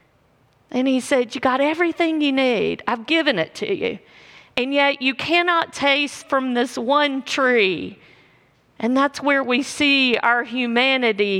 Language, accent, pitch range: English, American, 235-295 Hz